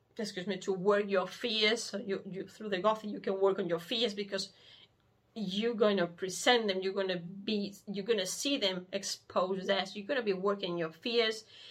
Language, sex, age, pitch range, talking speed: English, female, 30-49, 190-235 Hz, 200 wpm